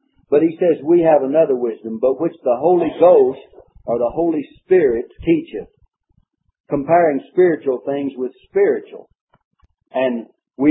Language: English